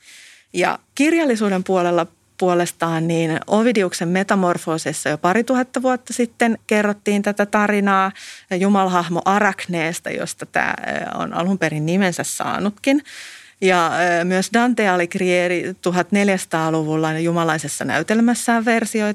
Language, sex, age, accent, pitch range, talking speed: Finnish, female, 30-49, native, 175-220 Hz, 100 wpm